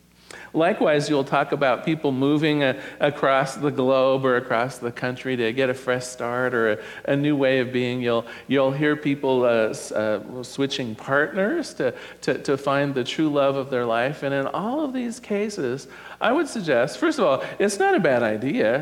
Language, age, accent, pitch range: English, 50-69, American, 130-180 Hz